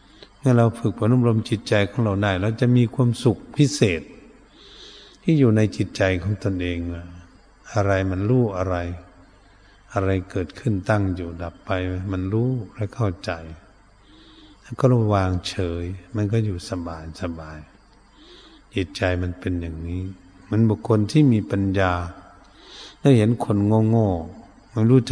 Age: 60-79